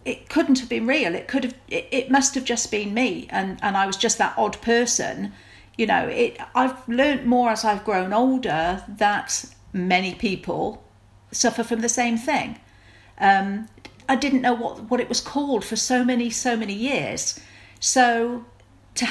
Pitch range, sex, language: 195-245 Hz, female, English